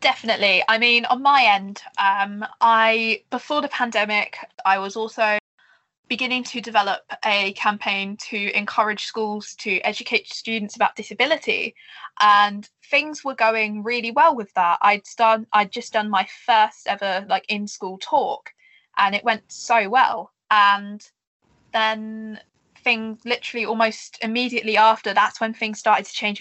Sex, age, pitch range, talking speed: female, 10-29, 200-225 Hz, 150 wpm